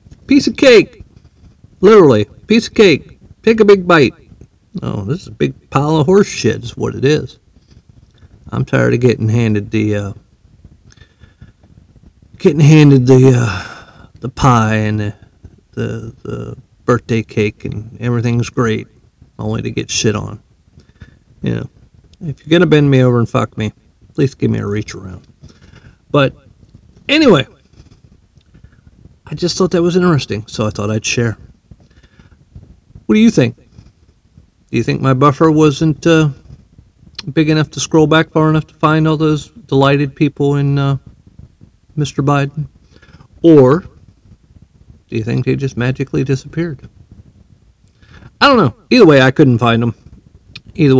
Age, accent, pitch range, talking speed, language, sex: 50-69, American, 110-150 Hz, 150 wpm, English, male